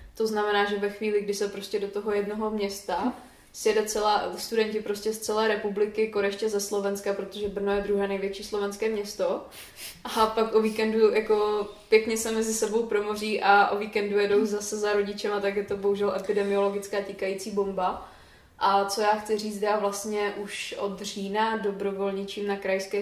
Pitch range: 195-210 Hz